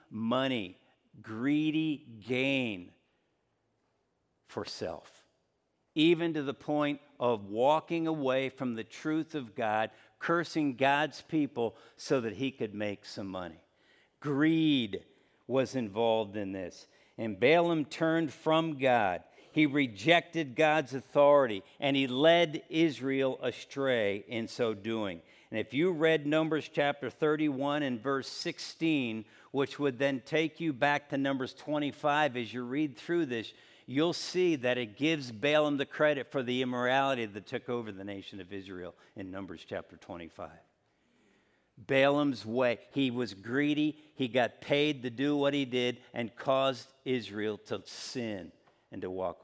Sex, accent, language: male, American, English